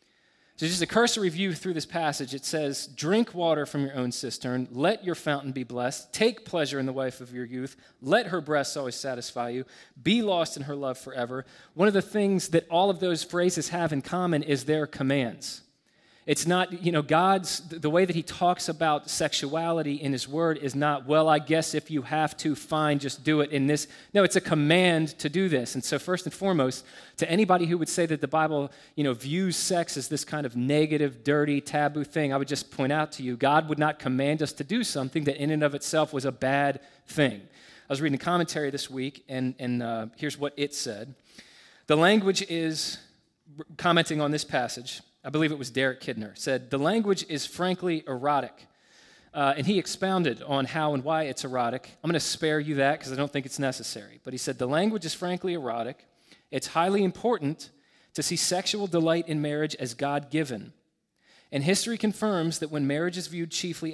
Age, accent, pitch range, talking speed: 30-49, American, 135-170 Hz, 210 wpm